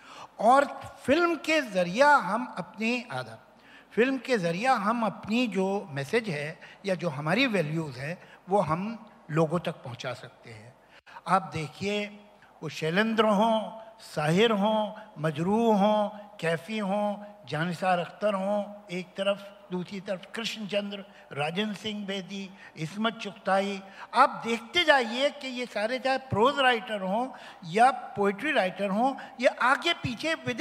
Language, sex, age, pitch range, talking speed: Hindi, male, 60-79, 160-225 Hz, 135 wpm